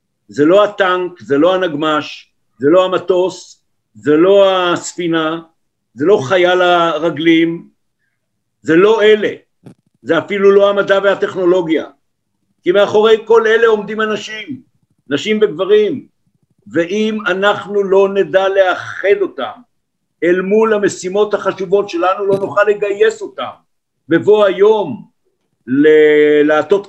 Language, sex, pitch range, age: Hebrew, male, 170-210 Hz, 60-79